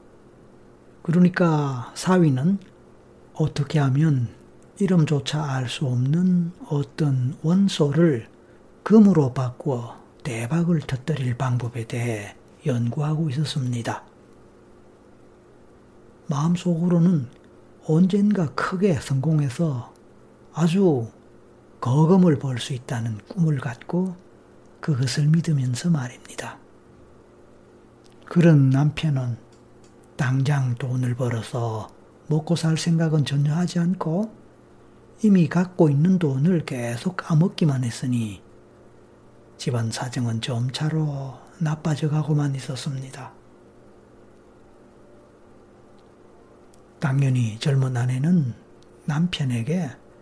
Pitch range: 125-165 Hz